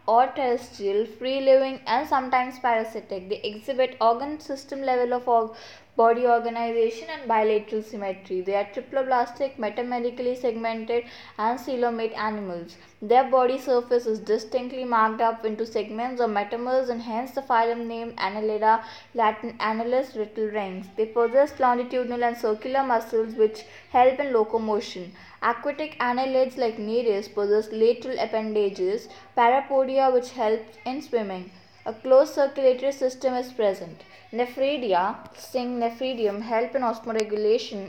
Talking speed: 130 wpm